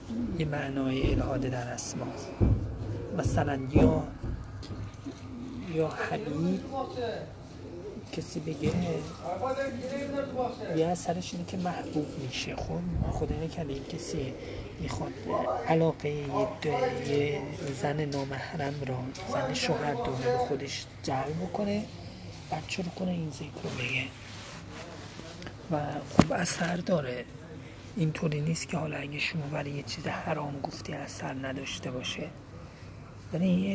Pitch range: 125-160 Hz